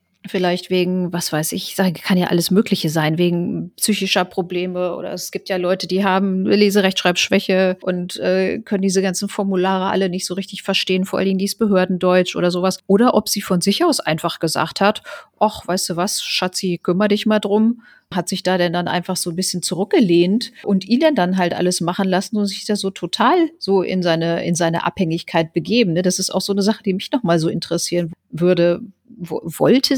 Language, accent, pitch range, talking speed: German, German, 180-210 Hz, 200 wpm